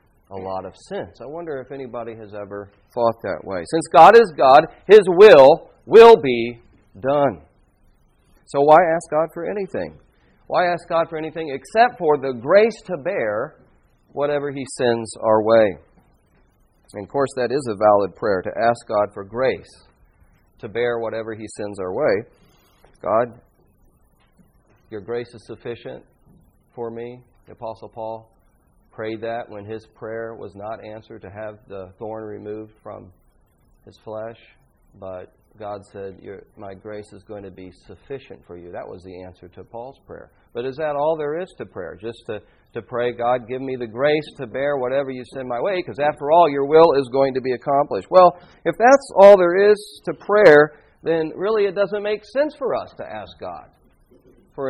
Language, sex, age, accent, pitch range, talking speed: English, male, 40-59, American, 105-155 Hz, 180 wpm